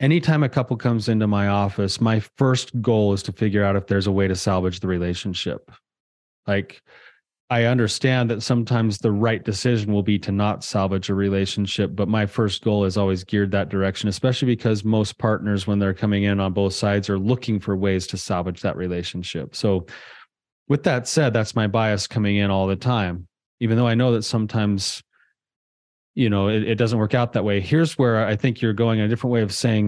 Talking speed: 205 wpm